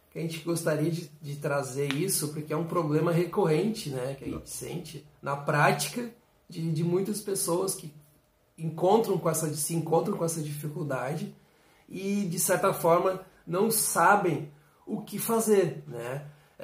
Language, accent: Portuguese, Brazilian